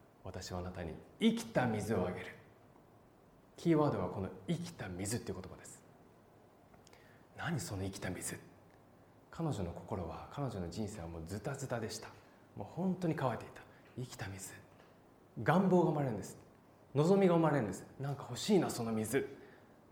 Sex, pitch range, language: male, 100-155 Hz, Japanese